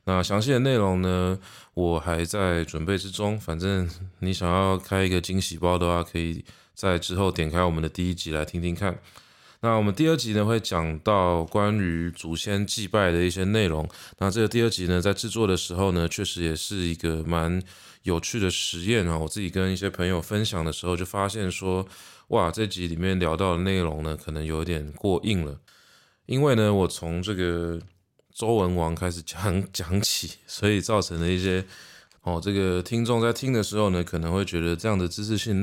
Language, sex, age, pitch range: Chinese, male, 20-39, 85-100 Hz